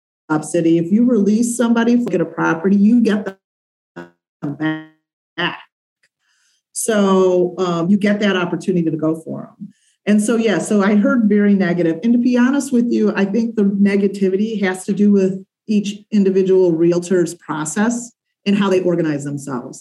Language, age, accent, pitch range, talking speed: English, 40-59, American, 185-230 Hz, 165 wpm